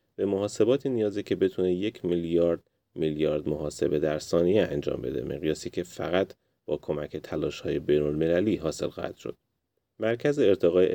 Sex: male